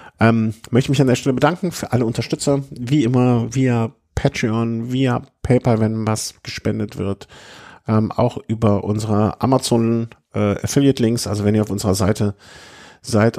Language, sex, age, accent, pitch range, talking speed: German, male, 50-69, German, 95-115 Hz, 150 wpm